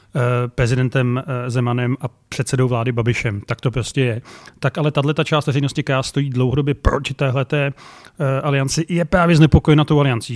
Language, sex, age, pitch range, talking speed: Slovak, male, 30-49, 130-150 Hz, 155 wpm